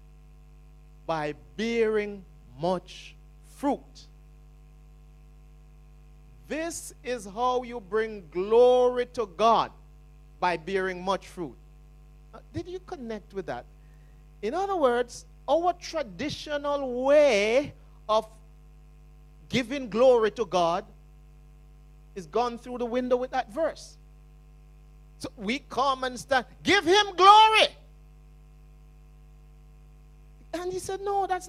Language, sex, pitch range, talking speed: English, male, 150-240 Hz, 105 wpm